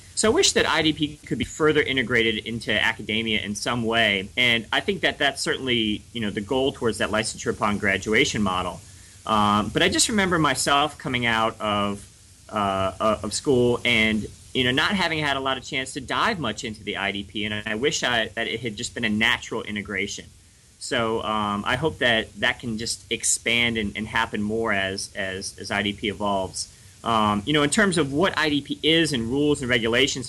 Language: English